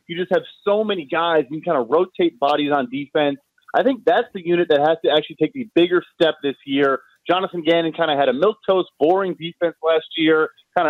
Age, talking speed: 30-49, 225 wpm